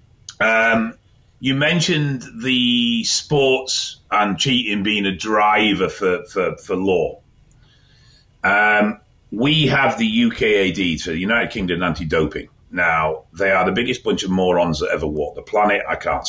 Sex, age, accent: male, 40-59, British